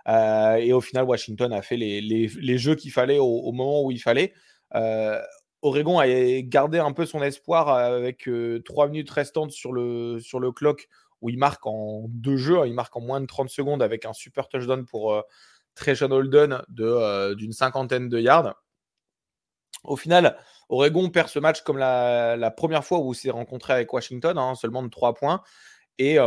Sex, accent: male, French